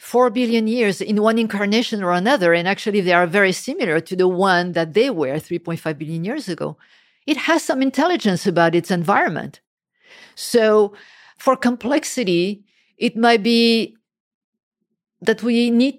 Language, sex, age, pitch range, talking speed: English, female, 50-69, 180-225 Hz, 150 wpm